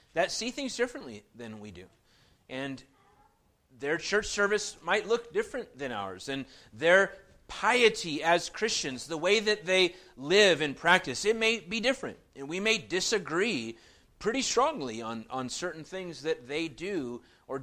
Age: 30-49